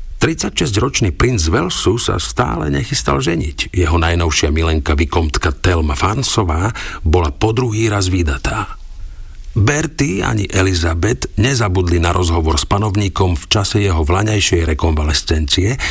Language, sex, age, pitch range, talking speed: Slovak, male, 50-69, 80-105 Hz, 115 wpm